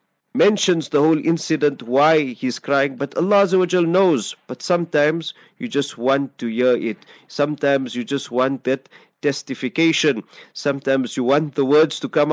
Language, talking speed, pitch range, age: English, 150 wpm, 130-155 Hz, 40-59